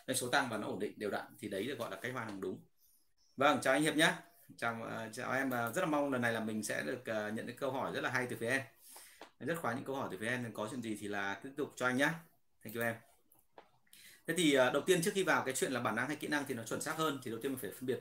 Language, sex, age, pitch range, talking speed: Vietnamese, male, 30-49, 105-140 Hz, 325 wpm